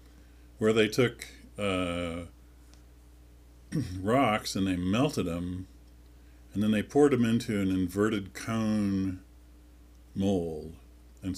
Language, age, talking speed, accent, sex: English, 50-69, 105 wpm, American, male